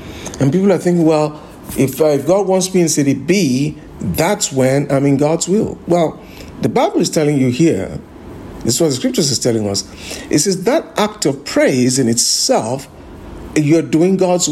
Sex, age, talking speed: male, 50-69, 190 wpm